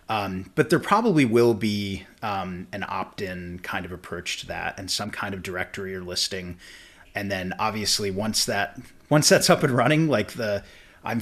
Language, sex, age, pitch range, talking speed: English, male, 30-49, 95-125 Hz, 180 wpm